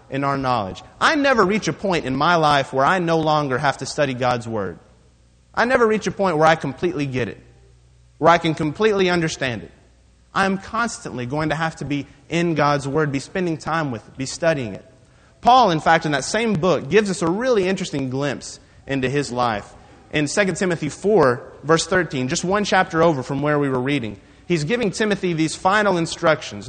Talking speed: 205 wpm